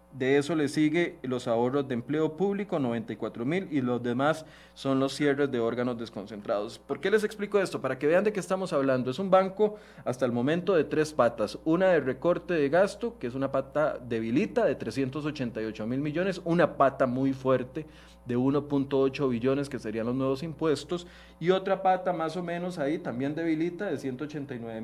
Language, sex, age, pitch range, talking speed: Spanish, male, 30-49, 125-170 Hz, 190 wpm